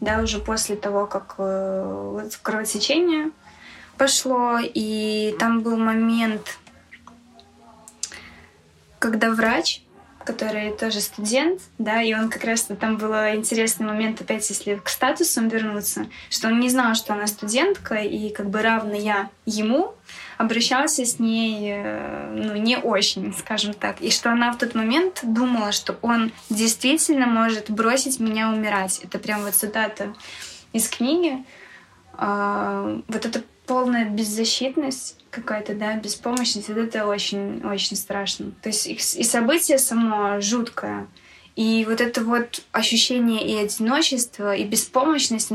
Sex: female